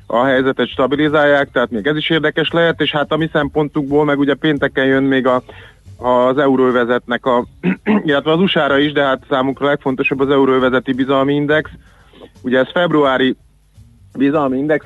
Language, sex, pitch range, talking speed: Hungarian, male, 125-145 Hz, 160 wpm